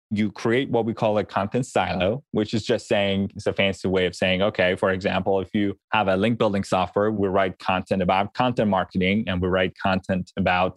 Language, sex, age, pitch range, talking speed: English, male, 20-39, 95-120 Hz, 215 wpm